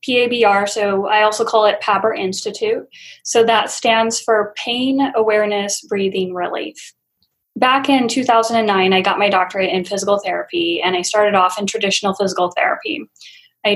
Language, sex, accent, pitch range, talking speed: English, female, American, 200-230 Hz, 155 wpm